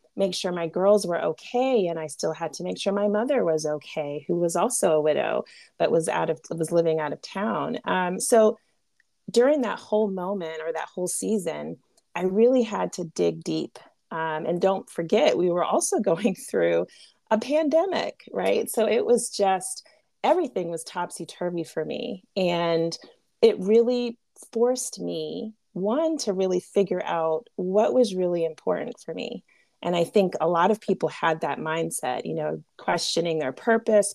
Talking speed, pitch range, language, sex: 175 wpm, 160-210 Hz, English, female